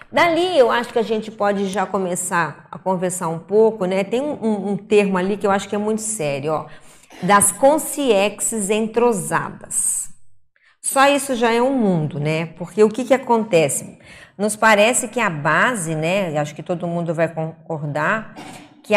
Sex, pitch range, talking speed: female, 175-240 Hz, 175 wpm